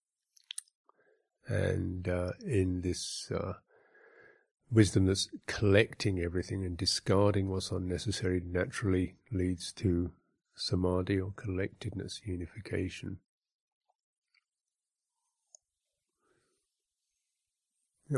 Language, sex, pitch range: English, male, 95-115 Hz